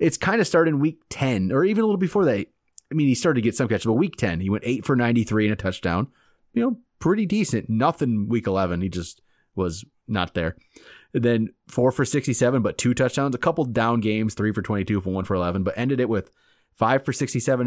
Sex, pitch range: male, 105-145 Hz